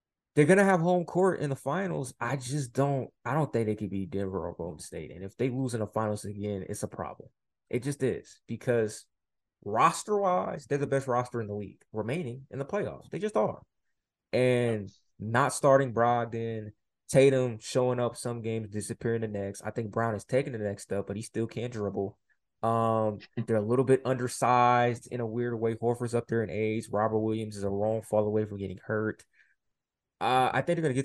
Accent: American